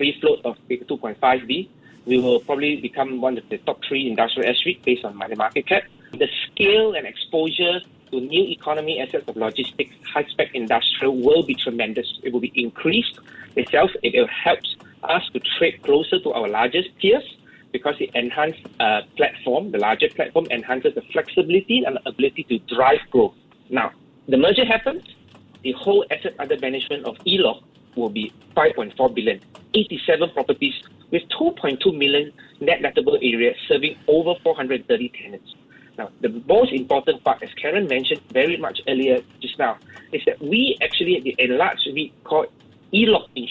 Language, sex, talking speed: English, male, 165 wpm